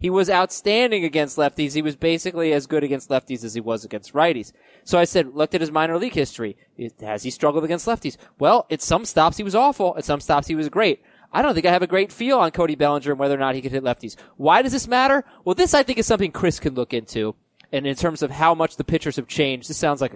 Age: 20-39